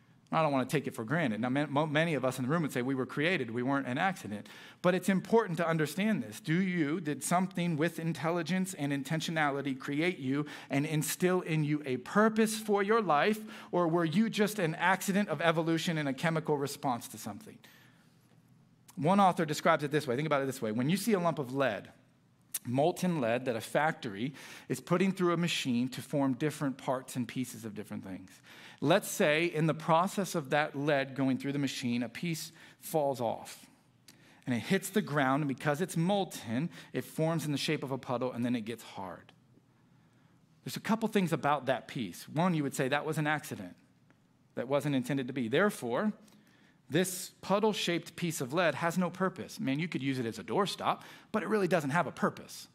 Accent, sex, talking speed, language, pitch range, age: American, male, 210 wpm, English, 135-175 Hz, 40-59